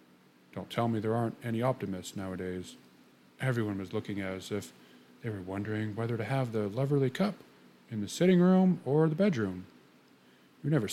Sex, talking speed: male, 170 wpm